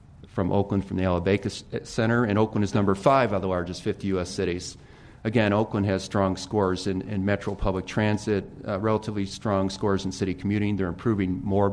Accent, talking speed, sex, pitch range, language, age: American, 195 wpm, male, 95-105 Hz, English, 40-59